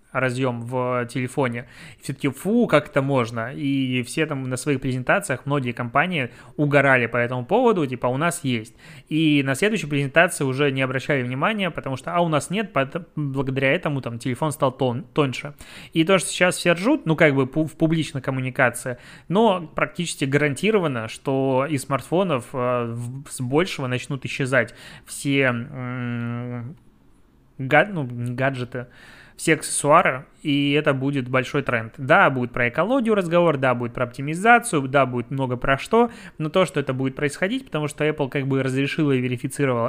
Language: Russian